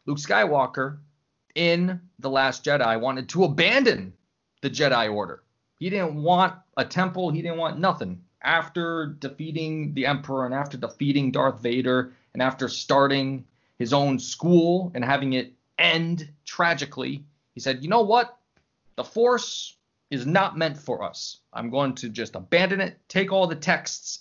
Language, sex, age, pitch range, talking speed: English, male, 30-49, 110-150 Hz, 155 wpm